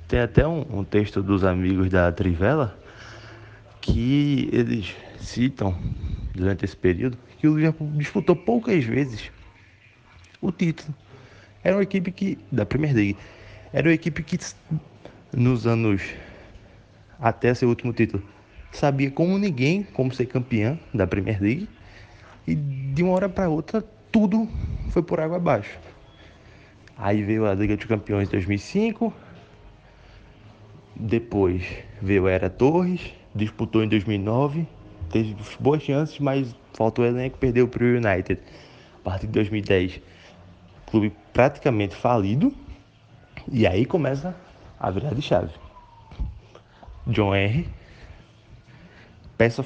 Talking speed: 125 wpm